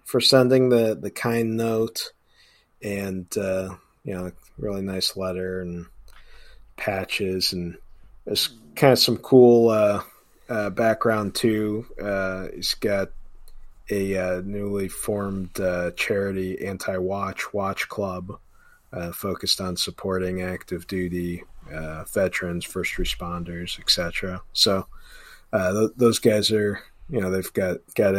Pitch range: 95-115 Hz